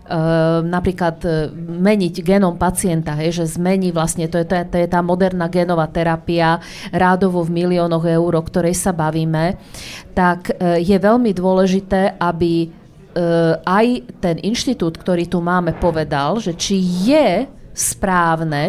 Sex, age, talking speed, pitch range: female, 40-59, 145 wpm, 165-190 Hz